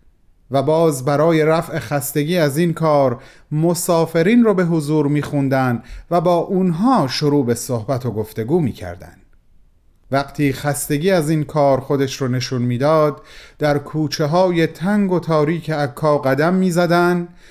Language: Persian